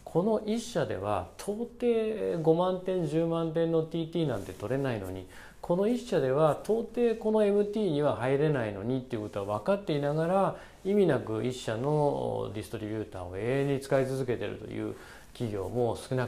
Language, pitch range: Japanese, 120-200 Hz